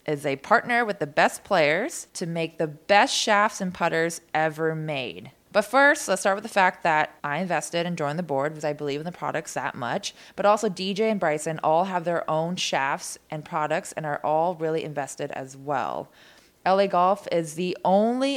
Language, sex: English, female